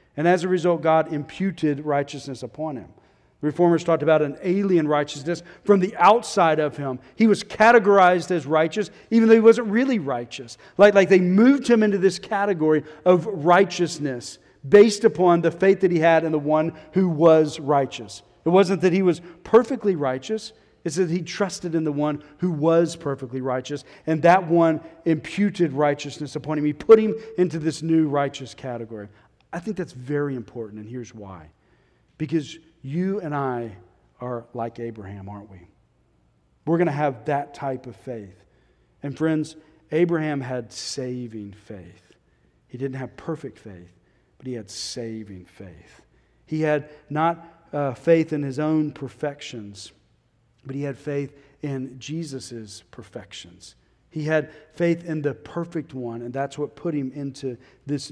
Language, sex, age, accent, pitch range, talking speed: English, male, 40-59, American, 125-170 Hz, 165 wpm